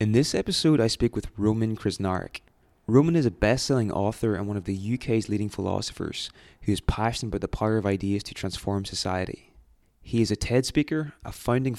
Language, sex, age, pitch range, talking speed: English, male, 20-39, 100-115 Hz, 200 wpm